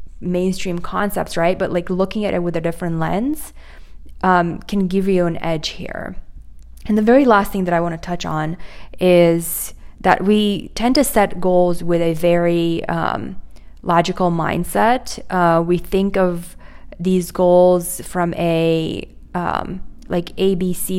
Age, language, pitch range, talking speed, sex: 20-39, English, 170-200 Hz, 160 wpm, female